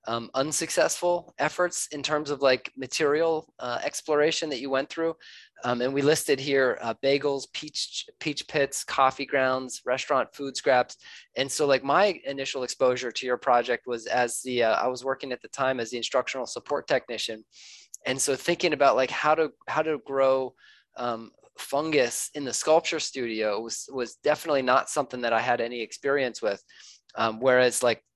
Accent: American